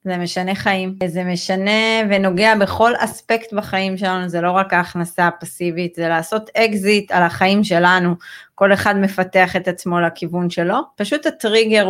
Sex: female